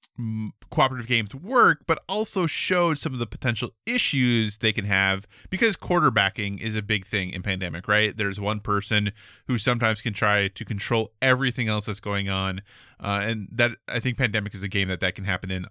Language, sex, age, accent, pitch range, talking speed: English, male, 20-39, American, 105-145 Hz, 195 wpm